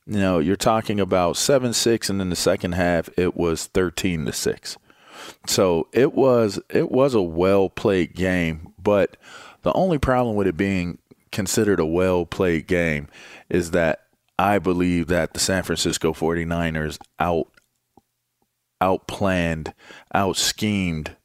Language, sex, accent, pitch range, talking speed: English, male, American, 80-95 Hz, 135 wpm